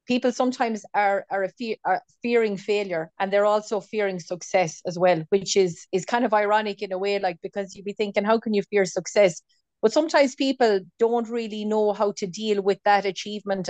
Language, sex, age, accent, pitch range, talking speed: English, female, 30-49, Irish, 195-220 Hz, 205 wpm